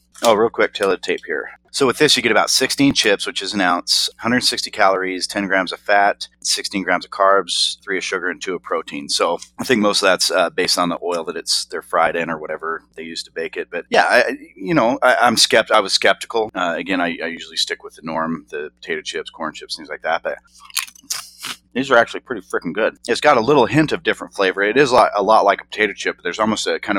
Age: 30-49